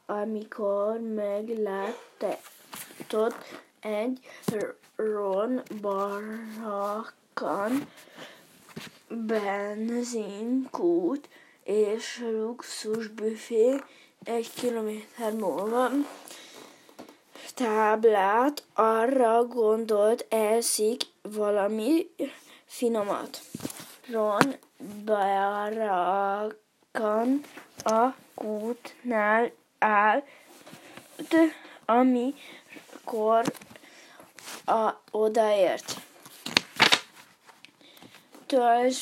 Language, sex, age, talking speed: Hungarian, female, 20-39, 40 wpm